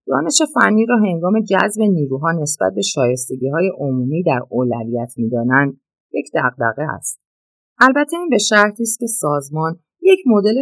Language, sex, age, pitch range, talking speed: Persian, female, 30-49, 135-215 Hz, 155 wpm